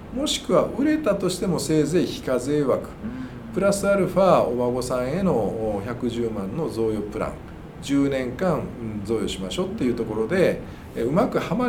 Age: 50-69